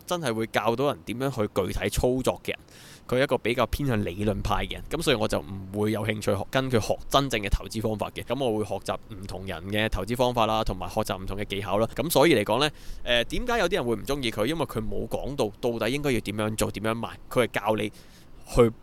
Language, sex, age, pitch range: Chinese, male, 20-39, 105-140 Hz